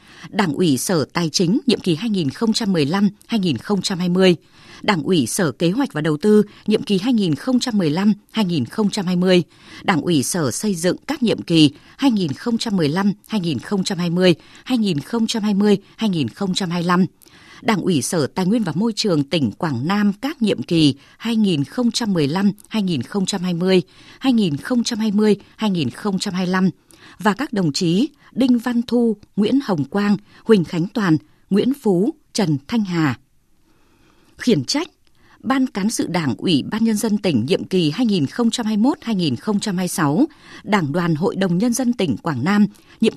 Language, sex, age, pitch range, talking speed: Vietnamese, female, 20-39, 175-230 Hz, 120 wpm